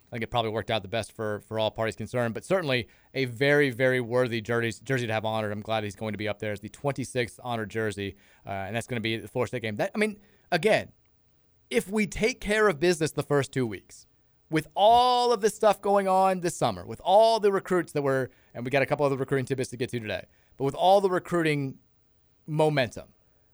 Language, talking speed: English, 240 wpm